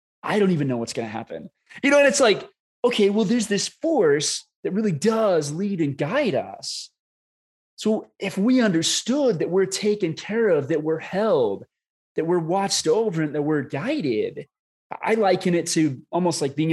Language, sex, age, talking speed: English, male, 20-39, 185 wpm